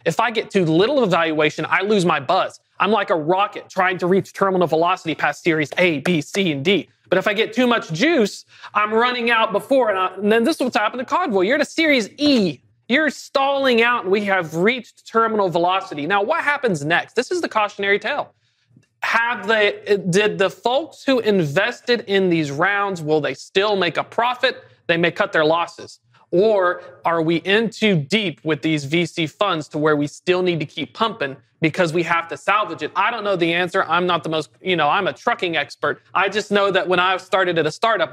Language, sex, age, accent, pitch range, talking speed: English, male, 30-49, American, 160-210 Hz, 220 wpm